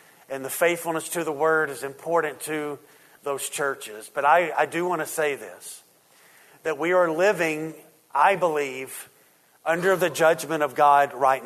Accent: American